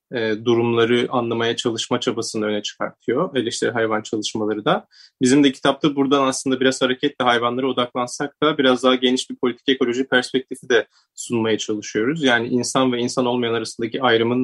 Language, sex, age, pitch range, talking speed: Turkish, male, 30-49, 110-125 Hz, 160 wpm